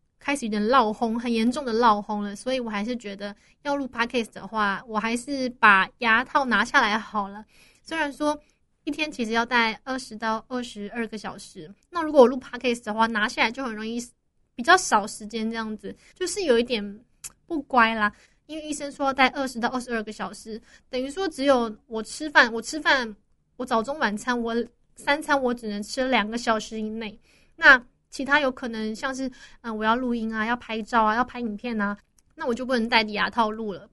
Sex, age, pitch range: female, 20-39, 220-270 Hz